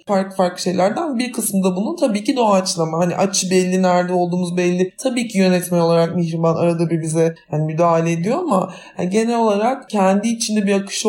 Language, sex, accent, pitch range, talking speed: Turkish, male, native, 170-205 Hz, 185 wpm